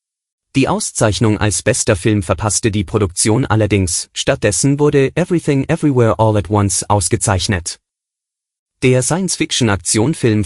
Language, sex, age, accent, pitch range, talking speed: German, male, 30-49, German, 100-130 Hz, 110 wpm